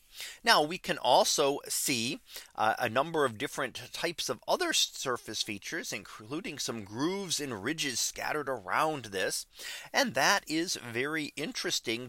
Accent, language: American, English